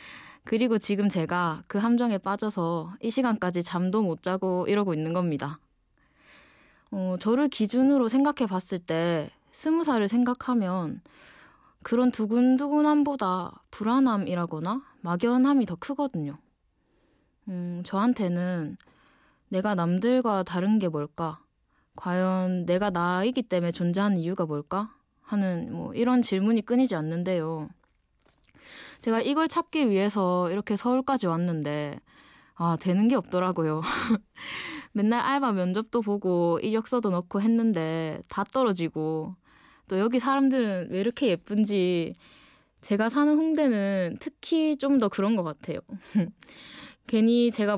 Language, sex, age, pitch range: Korean, female, 20-39, 180-245 Hz